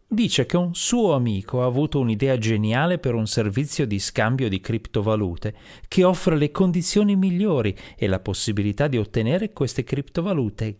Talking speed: 155 wpm